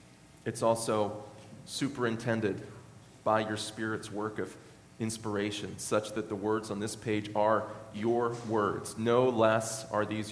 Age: 30-49